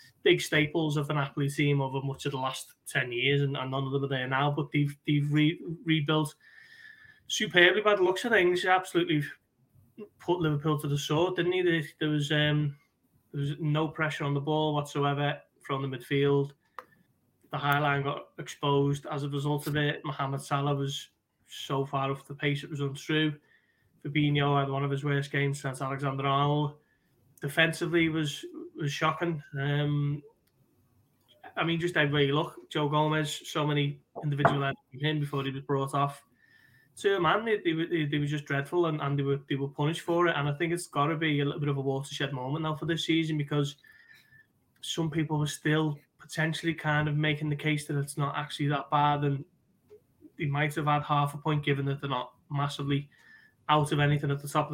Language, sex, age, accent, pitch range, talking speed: English, male, 20-39, British, 140-160 Hz, 205 wpm